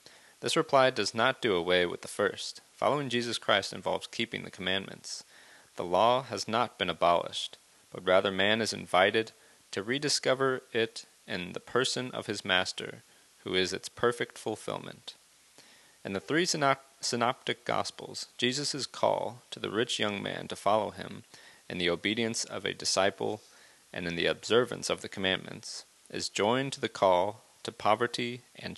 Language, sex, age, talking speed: English, male, 30-49, 160 wpm